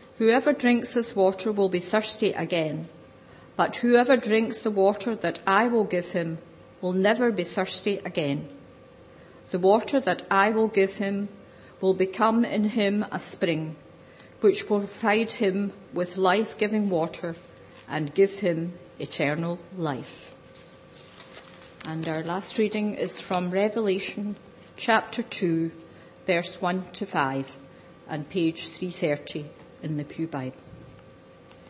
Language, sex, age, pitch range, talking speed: English, female, 50-69, 175-220 Hz, 130 wpm